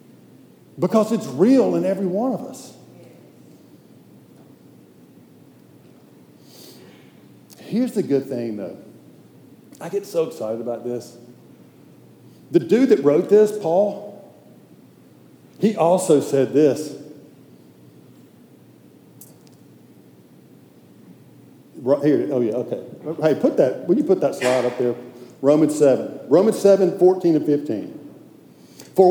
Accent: American